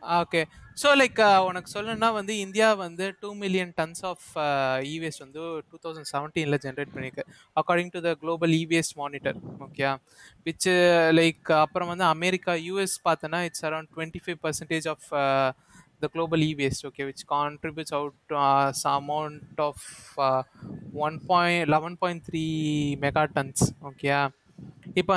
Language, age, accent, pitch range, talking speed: Tamil, 20-39, native, 145-180 Hz, 130 wpm